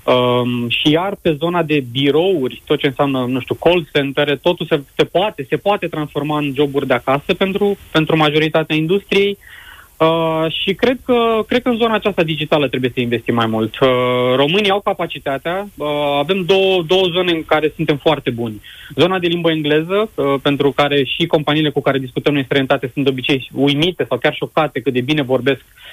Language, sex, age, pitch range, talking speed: Romanian, male, 20-39, 140-180 Hz, 190 wpm